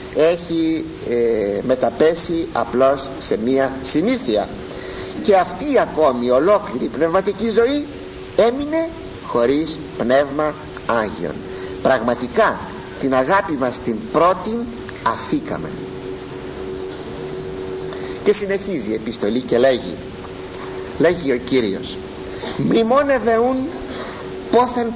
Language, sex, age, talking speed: Greek, male, 50-69, 90 wpm